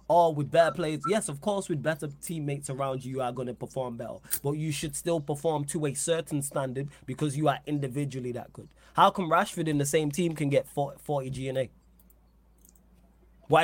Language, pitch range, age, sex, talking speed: English, 140-180 Hz, 20-39, male, 200 wpm